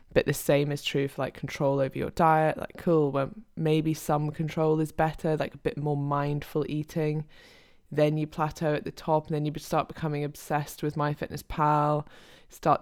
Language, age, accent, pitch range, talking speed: English, 20-39, British, 145-160 Hz, 195 wpm